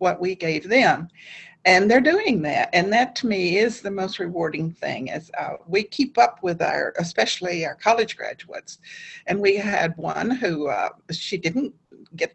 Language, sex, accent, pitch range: English, female, American, 175-235 Hz